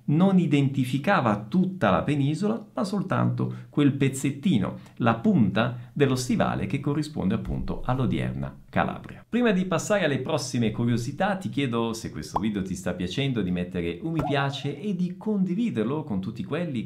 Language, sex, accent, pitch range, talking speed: Italian, male, native, 100-160 Hz, 155 wpm